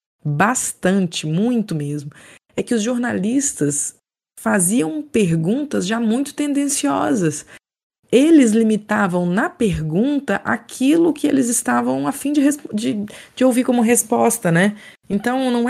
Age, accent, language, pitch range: 20-39, Brazilian, Portuguese, 180-255 Hz